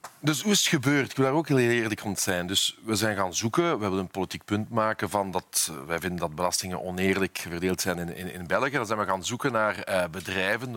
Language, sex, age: Dutch, male, 40-59